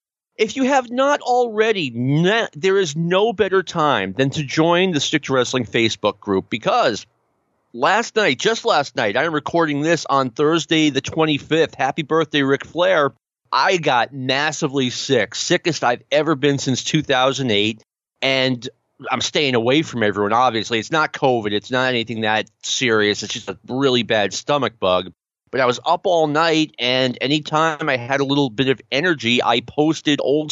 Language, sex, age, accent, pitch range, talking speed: English, male, 40-59, American, 130-165 Hz, 170 wpm